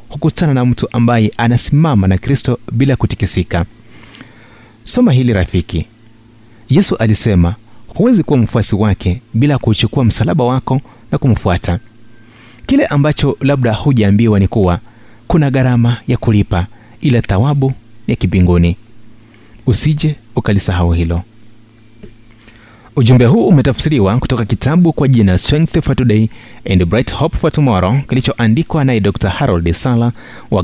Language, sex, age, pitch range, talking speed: Swahili, male, 30-49, 100-125 Hz, 125 wpm